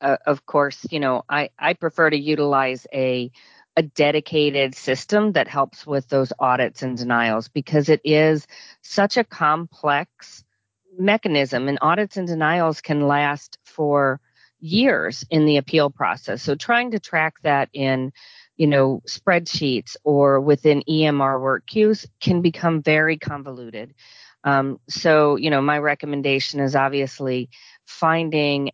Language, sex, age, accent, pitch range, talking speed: English, female, 40-59, American, 135-160 Hz, 140 wpm